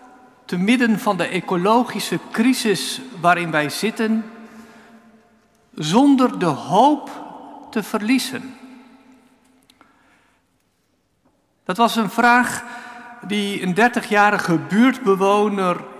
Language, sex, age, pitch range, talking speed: Dutch, male, 50-69, 185-230 Hz, 85 wpm